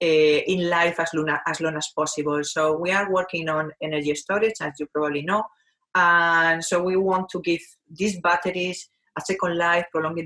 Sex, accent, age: female, Spanish, 30-49